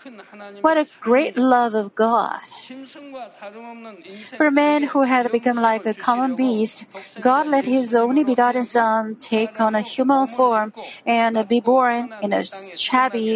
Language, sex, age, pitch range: Korean, female, 50-69, 215-265 Hz